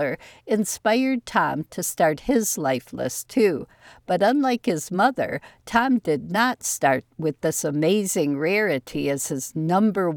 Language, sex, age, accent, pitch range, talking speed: English, female, 60-79, American, 160-220 Hz, 135 wpm